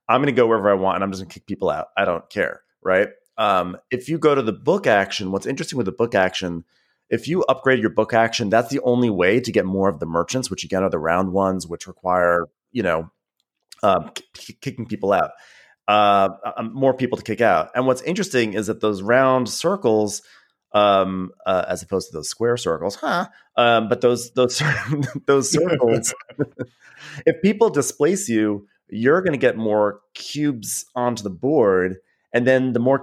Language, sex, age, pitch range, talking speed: English, male, 30-49, 95-125 Hz, 200 wpm